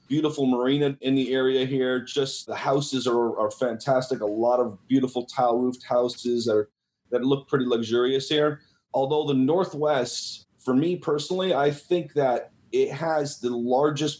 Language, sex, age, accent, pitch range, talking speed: English, male, 30-49, American, 120-145 Hz, 155 wpm